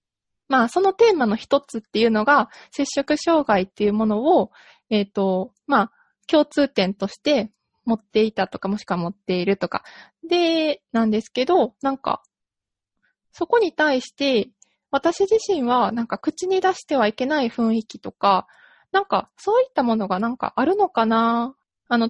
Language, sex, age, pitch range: Japanese, female, 20-39, 215-300 Hz